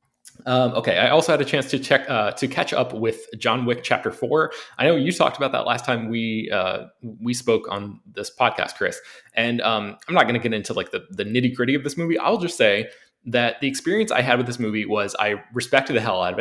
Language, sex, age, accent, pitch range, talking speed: English, male, 20-39, American, 105-130 Hz, 250 wpm